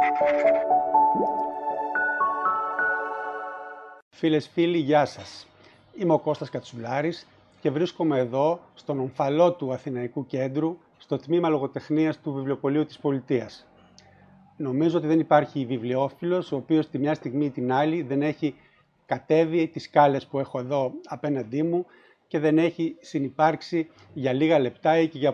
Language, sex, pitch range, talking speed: Greek, male, 135-160 Hz, 135 wpm